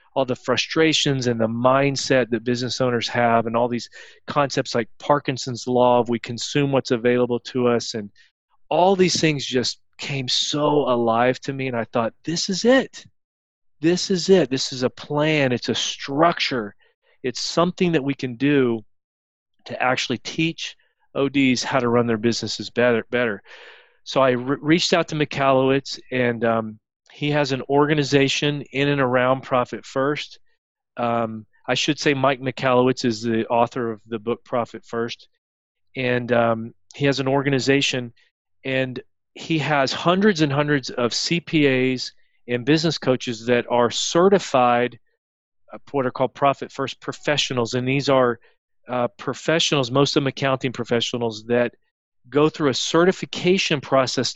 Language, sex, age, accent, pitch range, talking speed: English, male, 40-59, American, 120-150 Hz, 155 wpm